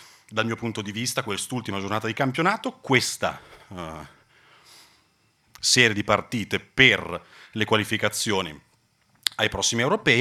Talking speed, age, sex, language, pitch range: 110 wpm, 30-49, male, Italian, 95-115 Hz